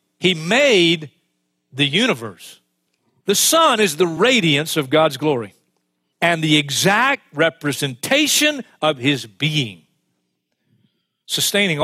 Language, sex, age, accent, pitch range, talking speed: English, male, 50-69, American, 145-240 Hz, 100 wpm